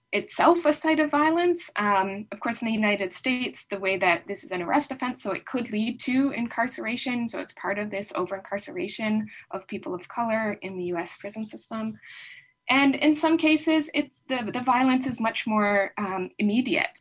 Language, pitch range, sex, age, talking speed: English, 190-255 Hz, female, 20-39, 185 wpm